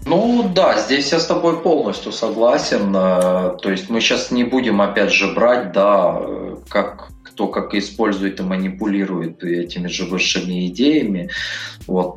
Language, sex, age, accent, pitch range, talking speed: Russian, male, 30-49, native, 95-120 Hz, 145 wpm